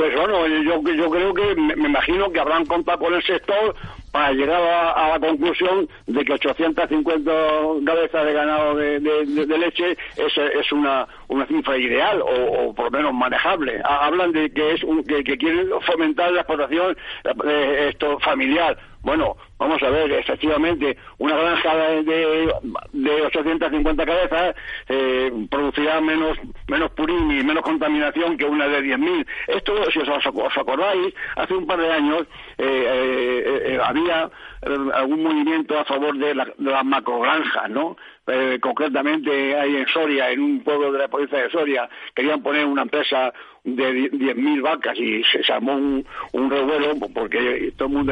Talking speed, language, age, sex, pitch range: 170 wpm, Spanish, 60-79, male, 140-175 Hz